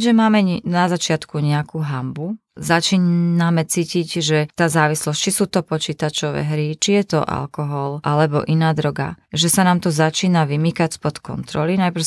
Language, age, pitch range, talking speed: Slovak, 30-49, 150-180 Hz, 160 wpm